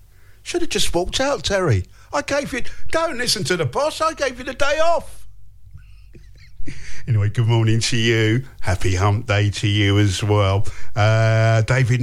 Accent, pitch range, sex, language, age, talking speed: British, 100-140 Hz, male, English, 50-69, 160 wpm